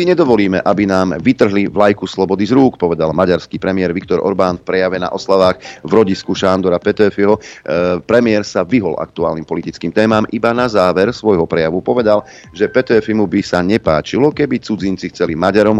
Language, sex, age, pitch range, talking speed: Slovak, male, 40-59, 90-110 Hz, 165 wpm